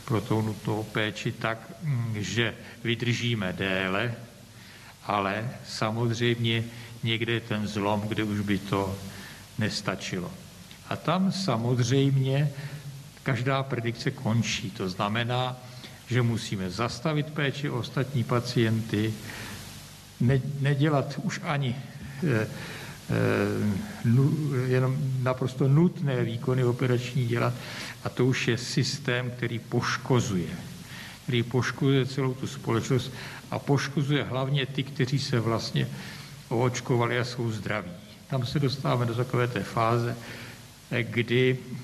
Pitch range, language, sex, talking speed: 115-140 Hz, Czech, male, 105 wpm